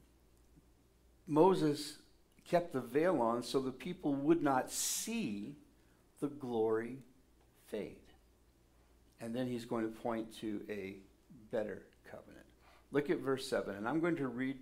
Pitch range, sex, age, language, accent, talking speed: 95-130 Hz, male, 60-79, English, American, 135 wpm